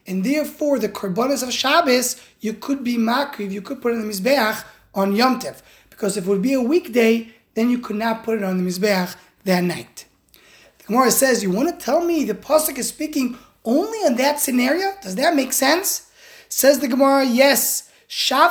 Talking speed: 205 wpm